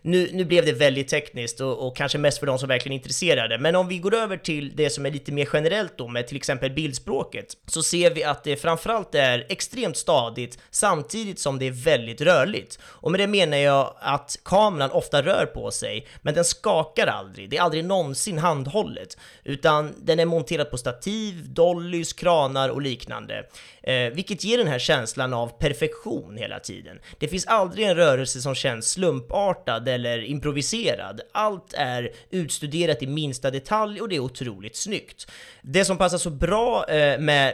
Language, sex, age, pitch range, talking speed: Swedish, male, 30-49, 135-175 Hz, 180 wpm